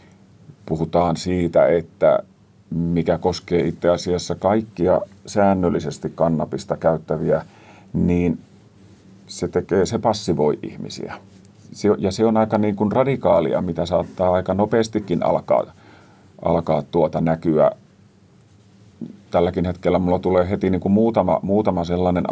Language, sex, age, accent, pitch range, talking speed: Finnish, male, 40-59, native, 85-100 Hz, 115 wpm